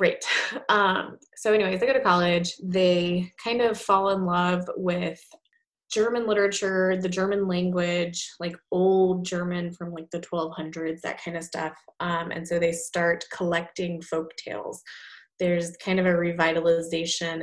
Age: 20-39